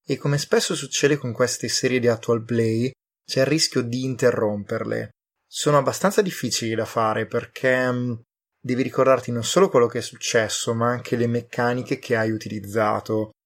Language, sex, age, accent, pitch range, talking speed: Italian, male, 20-39, native, 115-130 Hz, 165 wpm